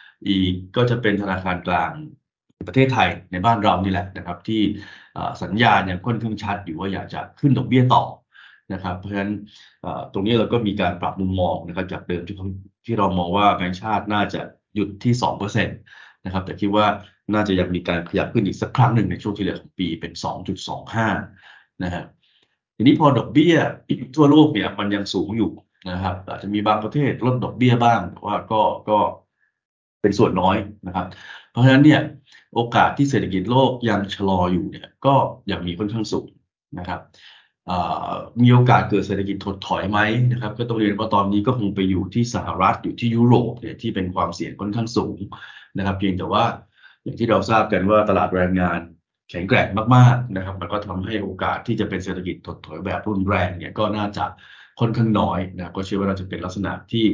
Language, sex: Thai, male